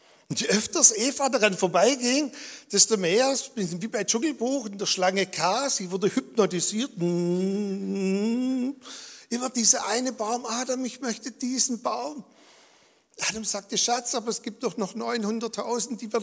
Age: 60-79